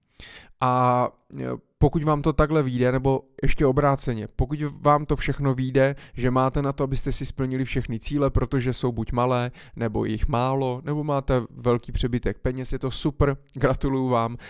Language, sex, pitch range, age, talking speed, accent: Czech, male, 125-140 Hz, 20-39, 165 wpm, native